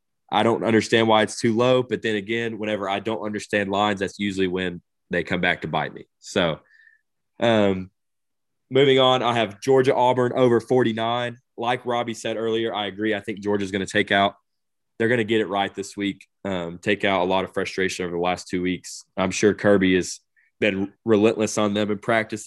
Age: 20-39